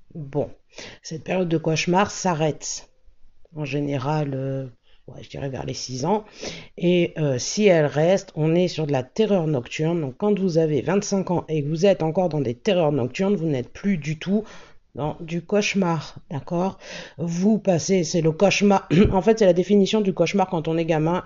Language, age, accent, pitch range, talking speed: French, 50-69, French, 155-185 Hz, 190 wpm